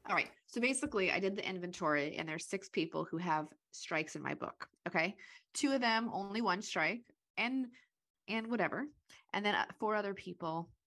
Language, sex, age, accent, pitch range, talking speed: English, female, 20-39, American, 160-225 Hz, 180 wpm